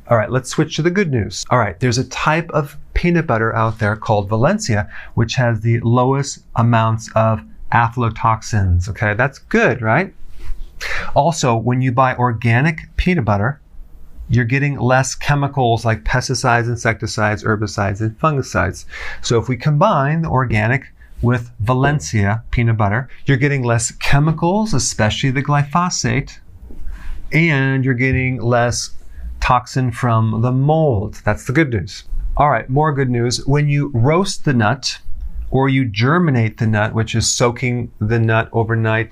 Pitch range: 110-135 Hz